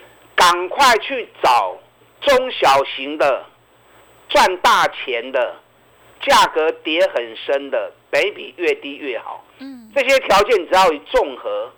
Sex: male